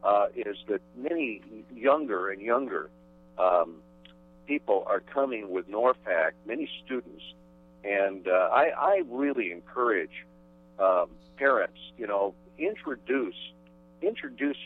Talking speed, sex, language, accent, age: 110 wpm, male, English, American, 50-69